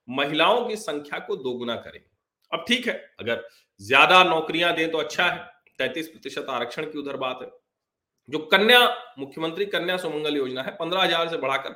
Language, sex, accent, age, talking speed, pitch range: Hindi, male, native, 40-59, 170 wpm, 135-225 Hz